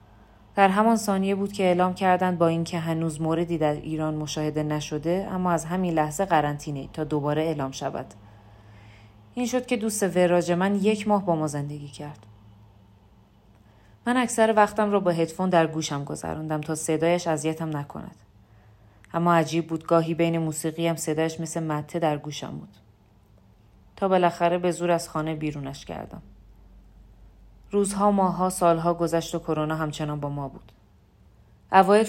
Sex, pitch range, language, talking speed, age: female, 125-170 Hz, Persian, 150 wpm, 30-49